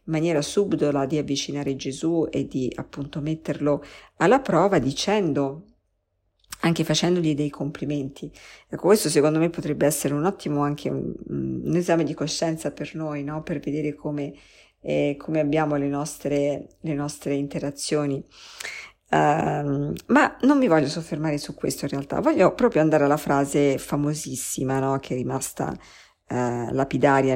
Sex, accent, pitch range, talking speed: female, native, 135-160 Hz, 145 wpm